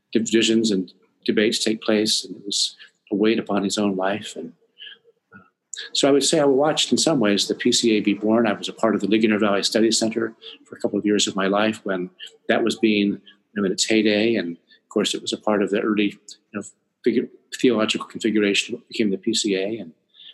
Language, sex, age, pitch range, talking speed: English, male, 50-69, 100-115 Hz, 220 wpm